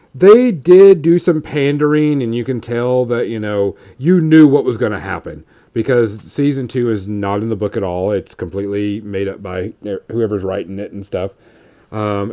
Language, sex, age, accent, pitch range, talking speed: English, male, 40-59, American, 100-140 Hz, 195 wpm